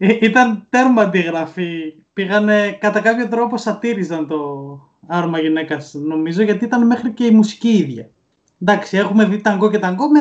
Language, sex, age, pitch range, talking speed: Greek, male, 20-39, 160-210 Hz, 160 wpm